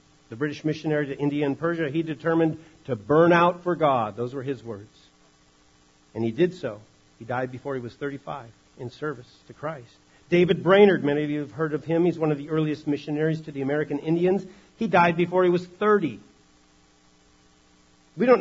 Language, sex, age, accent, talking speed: English, male, 50-69, American, 190 wpm